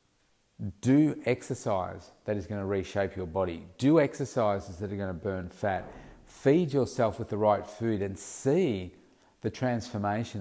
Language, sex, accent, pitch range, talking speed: English, male, Australian, 95-115 Hz, 155 wpm